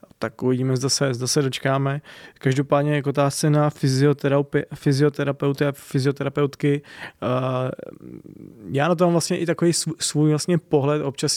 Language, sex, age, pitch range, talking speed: Czech, male, 20-39, 135-150 Hz, 120 wpm